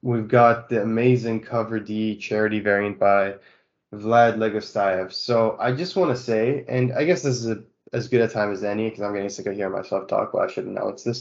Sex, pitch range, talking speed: male, 105-125 Hz, 225 wpm